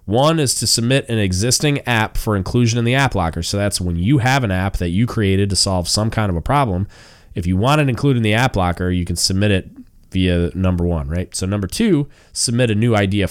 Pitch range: 90-120 Hz